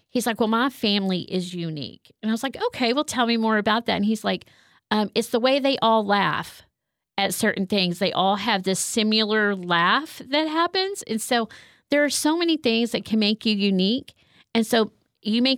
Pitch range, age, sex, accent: 195-245 Hz, 40-59, female, American